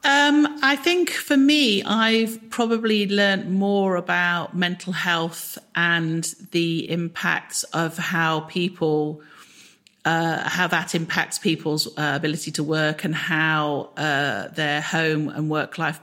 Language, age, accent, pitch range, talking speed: English, 40-59, British, 150-175 Hz, 130 wpm